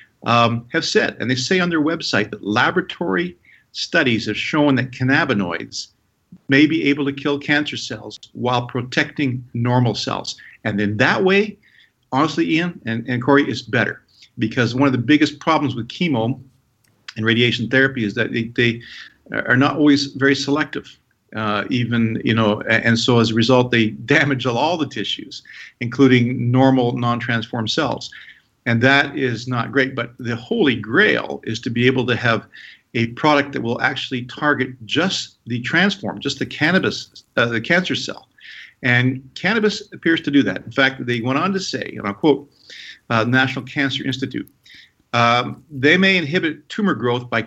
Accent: American